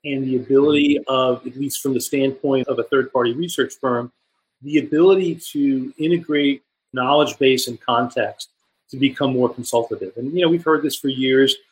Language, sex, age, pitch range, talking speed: English, male, 40-59, 125-145 Hz, 175 wpm